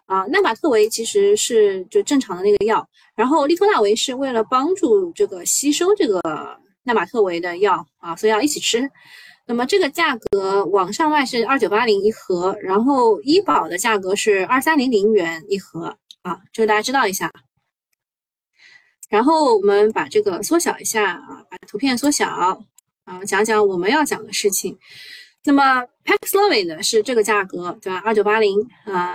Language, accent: Chinese, native